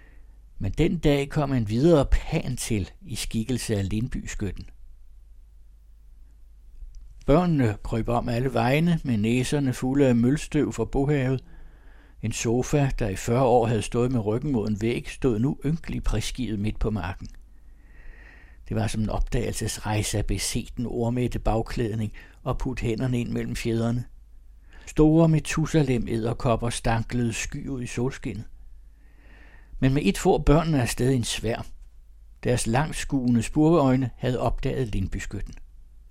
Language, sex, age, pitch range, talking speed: Danish, male, 60-79, 95-130 Hz, 135 wpm